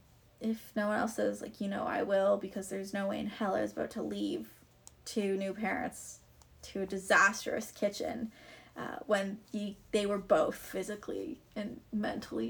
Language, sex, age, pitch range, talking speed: English, female, 10-29, 195-230 Hz, 175 wpm